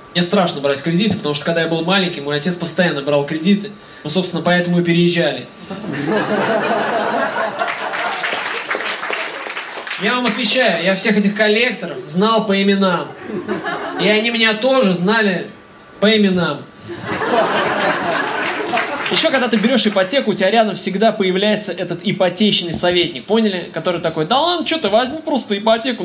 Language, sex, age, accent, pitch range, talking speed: Russian, male, 20-39, native, 175-220 Hz, 140 wpm